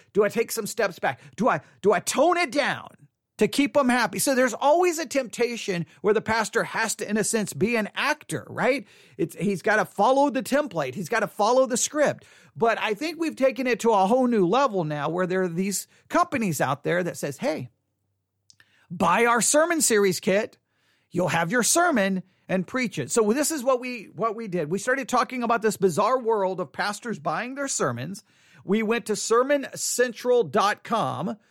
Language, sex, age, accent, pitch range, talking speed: English, male, 40-59, American, 190-255 Hz, 200 wpm